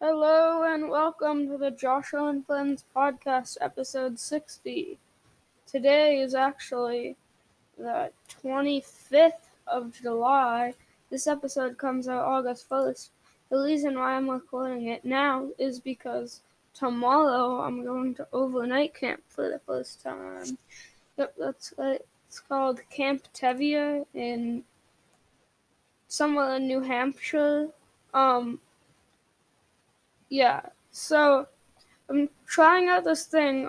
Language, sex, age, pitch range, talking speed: English, female, 10-29, 255-290 Hz, 115 wpm